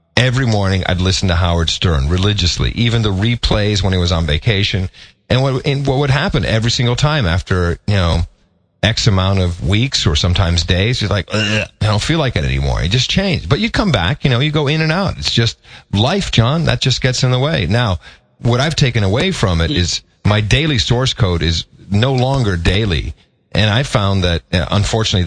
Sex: male